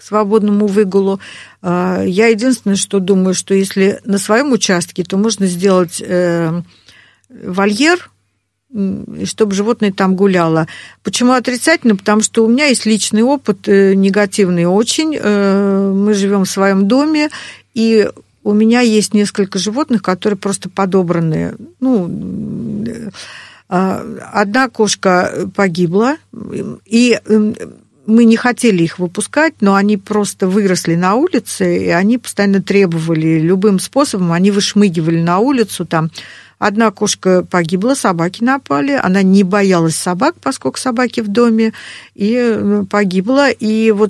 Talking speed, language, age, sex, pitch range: 120 wpm, Russian, 50-69, female, 190-225 Hz